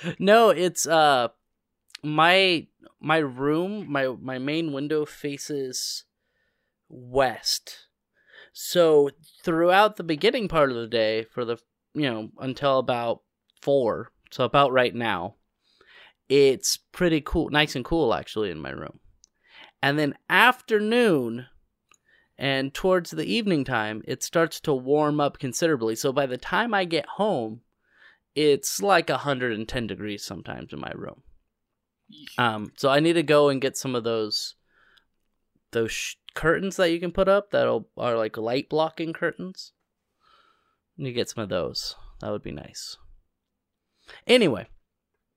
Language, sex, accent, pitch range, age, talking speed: English, male, American, 125-180 Hz, 30-49, 140 wpm